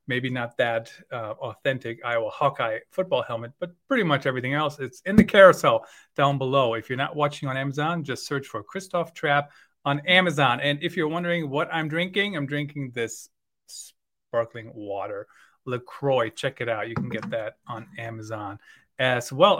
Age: 30-49